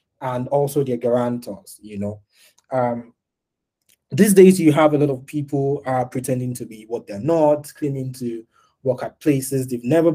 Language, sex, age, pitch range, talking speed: English, male, 20-39, 115-145 Hz, 170 wpm